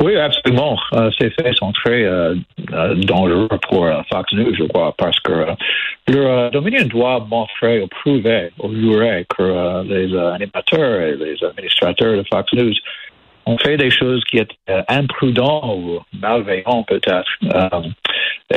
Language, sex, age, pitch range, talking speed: French, male, 60-79, 95-125 Hz, 160 wpm